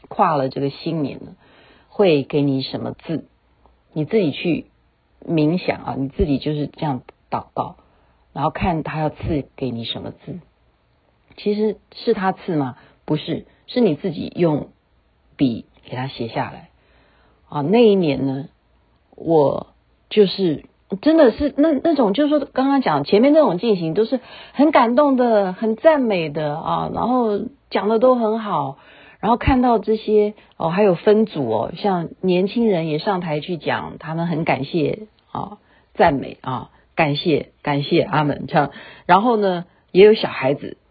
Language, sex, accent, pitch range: Chinese, female, native, 145-220 Hz